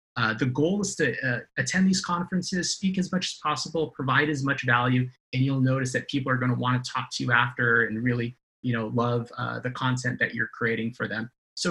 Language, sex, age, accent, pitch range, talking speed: English, male, 30-49, American, 120-140 Hz, 225 wpm